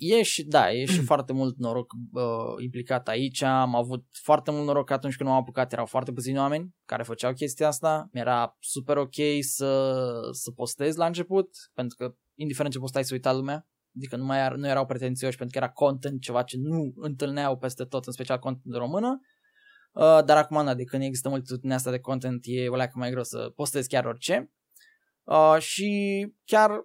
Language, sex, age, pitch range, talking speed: Romanian, male, 20-39, 130-155 Hz, 195 wpm